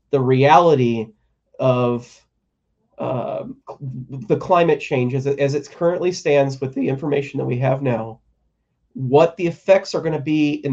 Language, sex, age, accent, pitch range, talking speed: English, male, 30-49, American, 130-170 Hz, 155 wpm